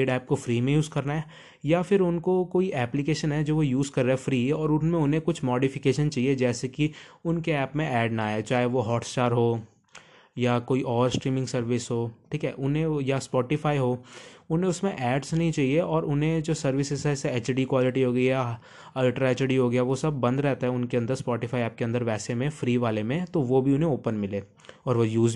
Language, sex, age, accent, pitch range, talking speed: Hindi, male, 20-39, native, 125-150 Hz, 165 wpm